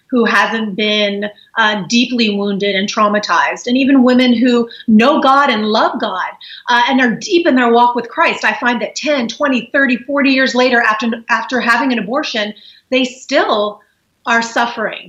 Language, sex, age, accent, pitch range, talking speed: English, female, 30-49, American, 215-250 Hz, 175 wpm